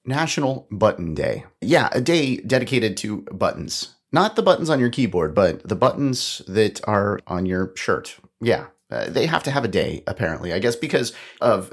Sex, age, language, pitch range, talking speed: male, 30-49, English, 100-140 Hz, 180 wpm